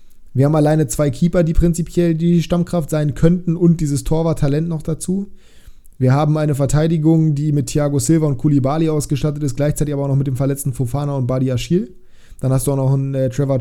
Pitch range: 135-160 Hz